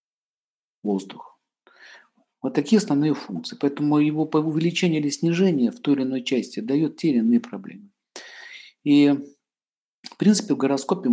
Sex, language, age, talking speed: male, Russian, 50-69, 140 wpm